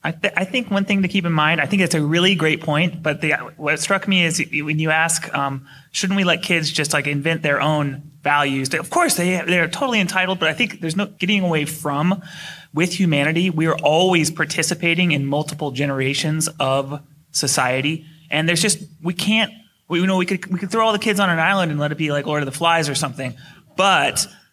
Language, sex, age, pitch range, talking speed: English, male, 30-49, 150-185 Hz, 230 wpm